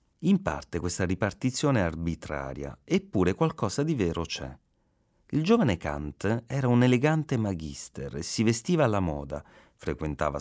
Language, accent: Italian, native